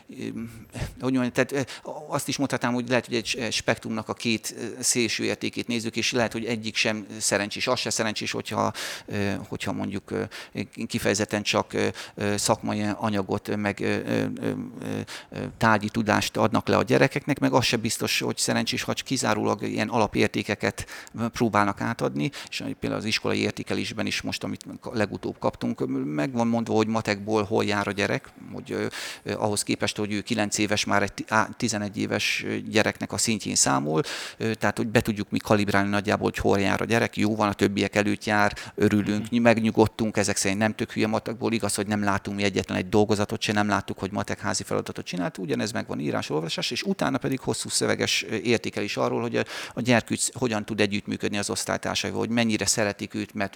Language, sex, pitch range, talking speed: Hungarian, male, 105-115 Hz, 170 wpm